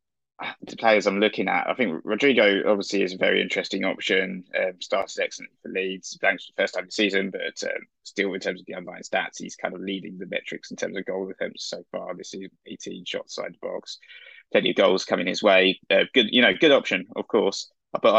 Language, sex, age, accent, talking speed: English, male, 20-39, British, 240 wpm